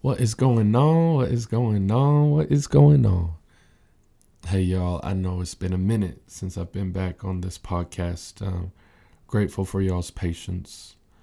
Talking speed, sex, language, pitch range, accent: 170 wpm, male, English, 90-105 Hz, American